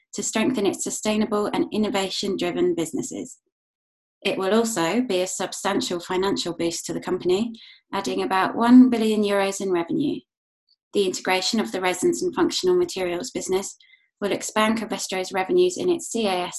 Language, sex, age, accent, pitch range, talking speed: English, female, 20-39, British, 190-255 Hz, 145 wpm